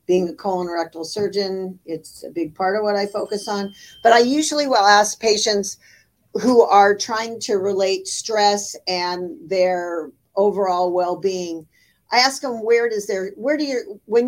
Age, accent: 50-69, American